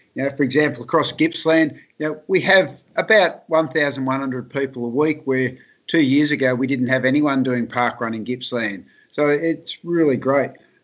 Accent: Australian